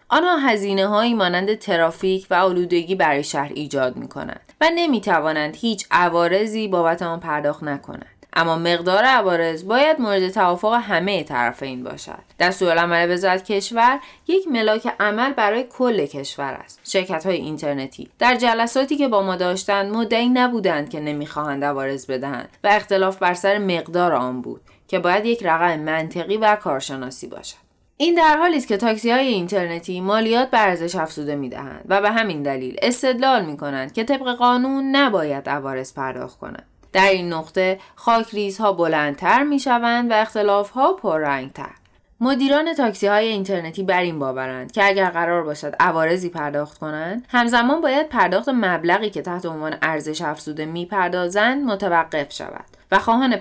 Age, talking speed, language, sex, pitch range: 20-39, 145 wpm, Persian, female, 155-225 Hz